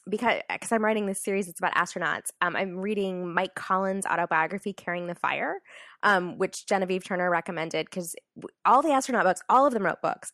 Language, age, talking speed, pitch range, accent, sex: English, 20-39, 190 wpm, 165-205 Hz, American, female